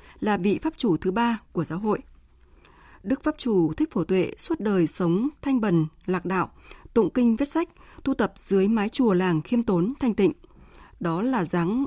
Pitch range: 180-240 Hz